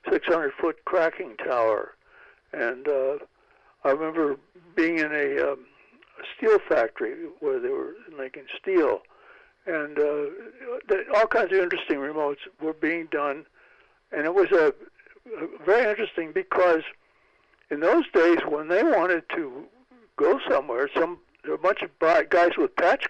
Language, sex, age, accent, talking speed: English, male, 60-79, American, 140 wpm